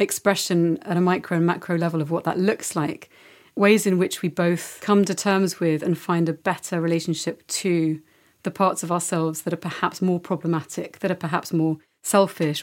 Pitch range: 170-210 Hz